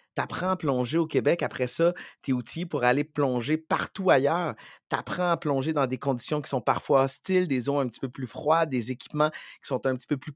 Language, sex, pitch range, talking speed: French, male, 120-155 Hz, 245 wpm